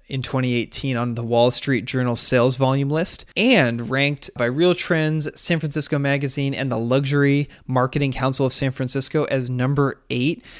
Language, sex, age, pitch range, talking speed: English, male, 20-39, 120-150 Hz, 165 wpm